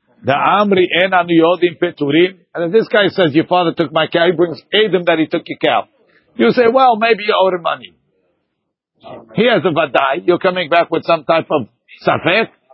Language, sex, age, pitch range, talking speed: English, male, 60-79, 160-215 Hz, 185 wpm